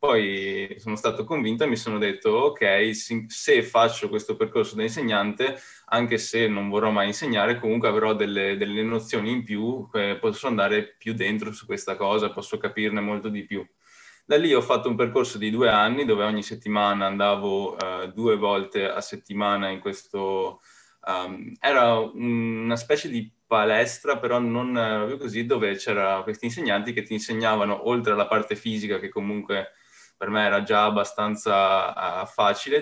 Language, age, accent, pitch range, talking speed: Italian, 20-39, native, 100-115 Hz, 165 wpm